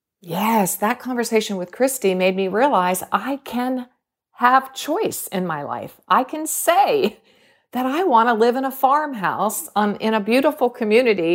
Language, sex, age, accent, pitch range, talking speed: English, female, 40-59, American, 165-245 Hz, 165 wpm